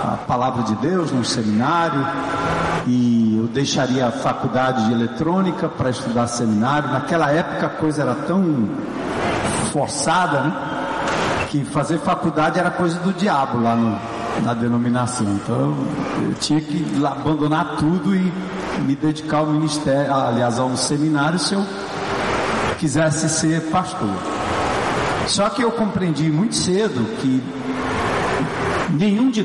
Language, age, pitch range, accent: Portuguese, 60-79, 130-170 Hz, Brazilian